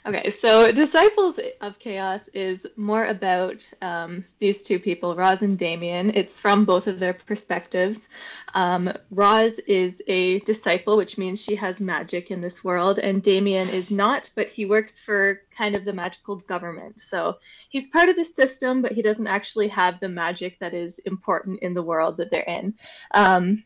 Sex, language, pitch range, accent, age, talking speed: female, English, 190-225 Hz, American, 20-39, 180 wpm